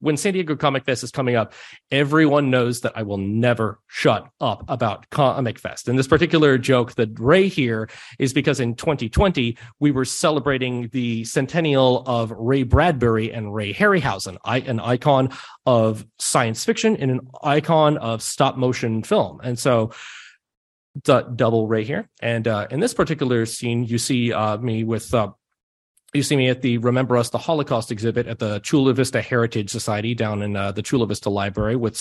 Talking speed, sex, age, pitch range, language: 175 wpm, male, 30-49, 115-135 Hz, English